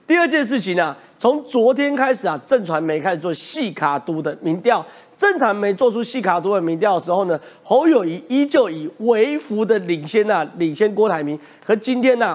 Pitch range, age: 185-280 Hz, 40-59